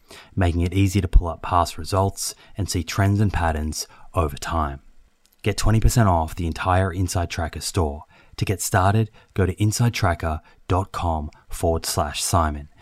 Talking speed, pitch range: 135 wpm, 80-95 Hz